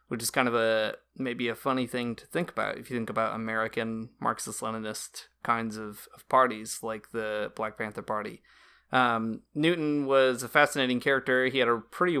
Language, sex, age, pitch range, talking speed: English, male, 20-39, 115-135 Hz, 185 wpm